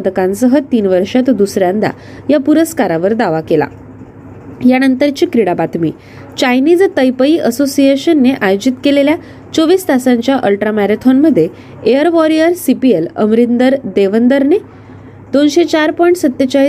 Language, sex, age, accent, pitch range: Marathi, female, 20-39, native, 205-280 Hz